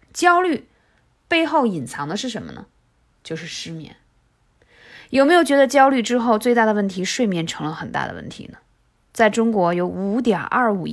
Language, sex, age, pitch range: Chinese, female, 20-39, 180-250 Hz